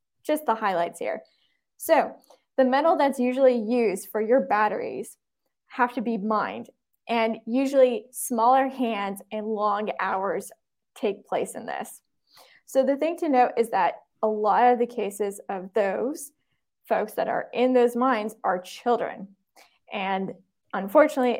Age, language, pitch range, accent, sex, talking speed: 10-29, English, 210-255 Hz, American, female, 145 wpm